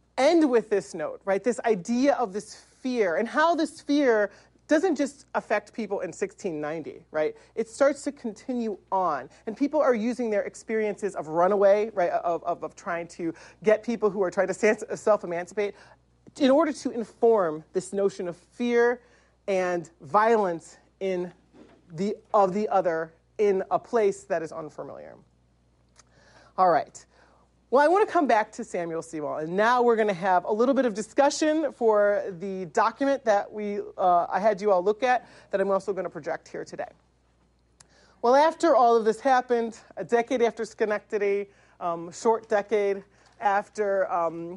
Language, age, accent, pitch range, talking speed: English, 40-59, American, 175-235 Hz, 170 wpm